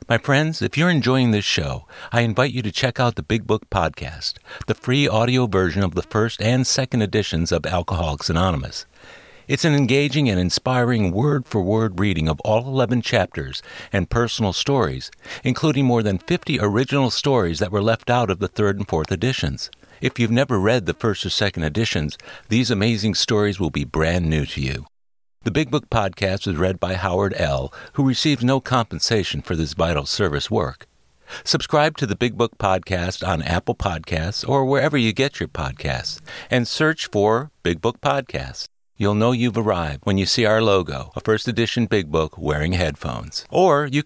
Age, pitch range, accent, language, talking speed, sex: 60-79, 90-125 Hz, American, English, 185 wpm, male